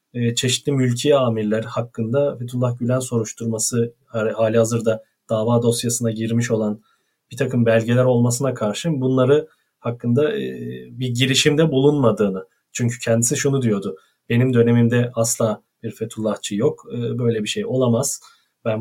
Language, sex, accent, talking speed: Turkish, male, native, 120 wpm